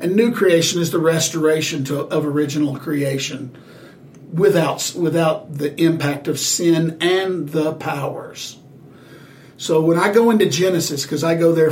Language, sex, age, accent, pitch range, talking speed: English, male, 60-79, American, 150-180 Hz, 145 wpm